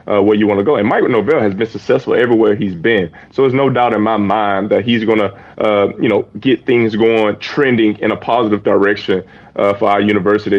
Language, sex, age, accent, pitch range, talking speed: English, male, 30-49, American, 105-120 Hz, 225 wpm